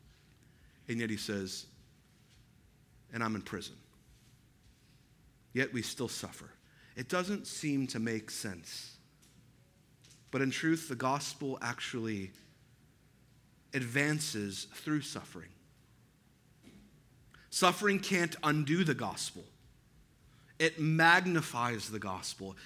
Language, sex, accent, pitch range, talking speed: English, male, American, 130-180 Hz, 95 wpm